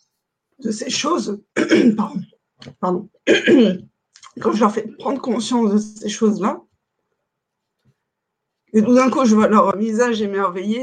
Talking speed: 135 wpm